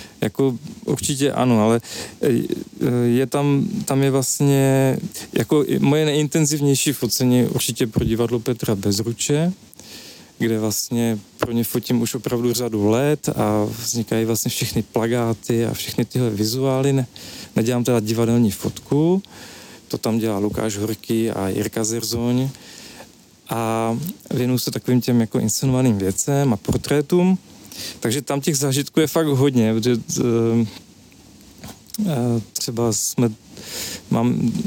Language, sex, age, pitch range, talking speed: Czech, male, 40-59, 115-135 Hz, 120 wpm